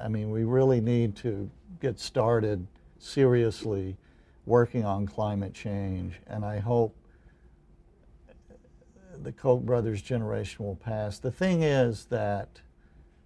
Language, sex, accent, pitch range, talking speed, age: English, male, American, 95-120 Hz, 120 wpm, 60-79